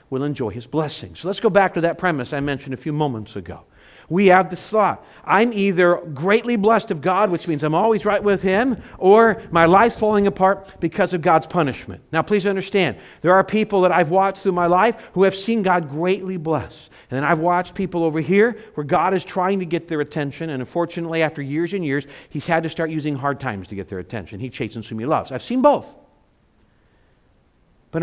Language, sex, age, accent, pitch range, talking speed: English, male, 50-69, American, 140-195 Hz, 220 wpm